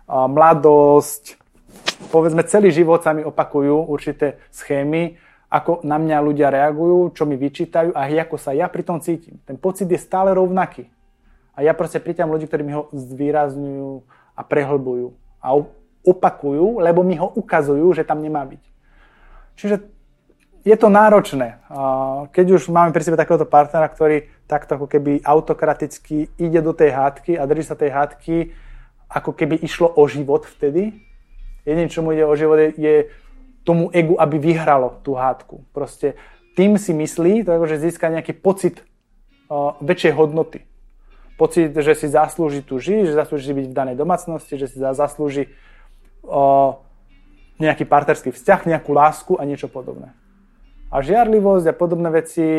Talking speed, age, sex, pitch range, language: 150 wpm, 20-39, male, 145-170 Hz, Slovak